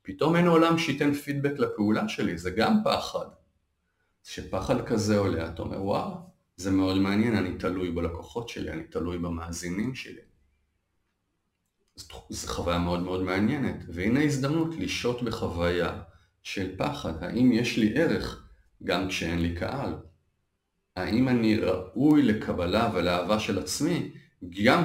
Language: Hebrew